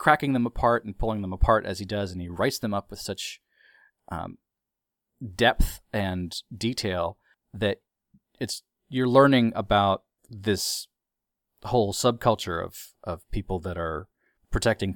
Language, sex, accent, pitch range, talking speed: English, male, American, 90-115 Hz, 140 wpm